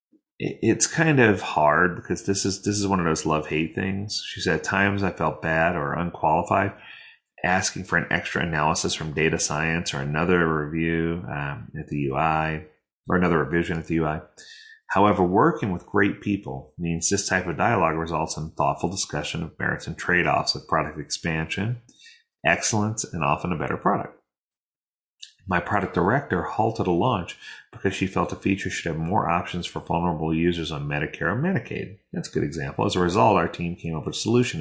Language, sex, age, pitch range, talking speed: English, male, 30-49, 80-120 Hz, 185 wpm